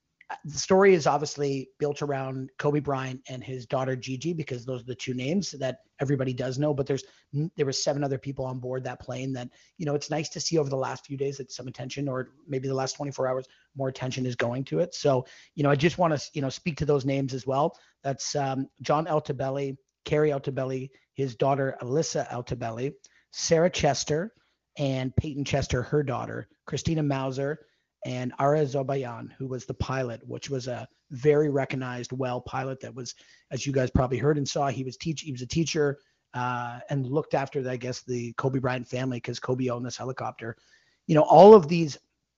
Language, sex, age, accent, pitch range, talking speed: English, male, 30-49, American, 130-145 Hz, 205 wpm